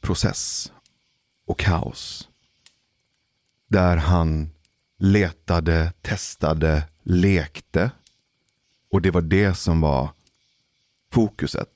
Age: 30-49